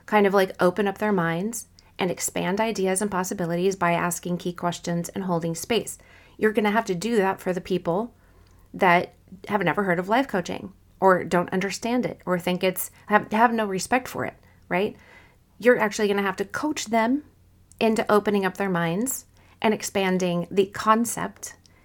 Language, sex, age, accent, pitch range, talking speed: English, female, 30-49, American, 180-220 Hz, 185 wpm